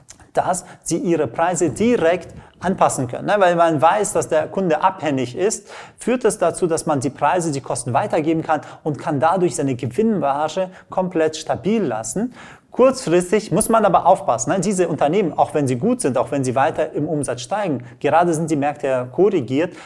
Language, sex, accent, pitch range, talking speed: German, male, German, 140-180 Hz, 185 wpm